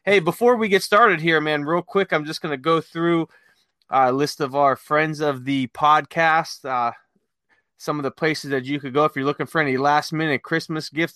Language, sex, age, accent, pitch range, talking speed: English, male, 20-39, American, 140-170 Hz, 215 wpm